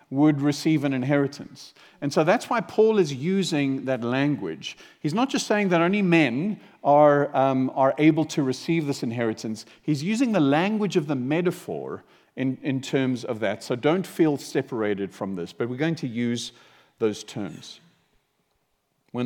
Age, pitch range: 50-69, 120-160 Hz